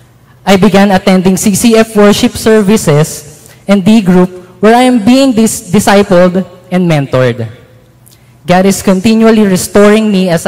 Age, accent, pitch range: 20-39, Filipino, 150-210 Hz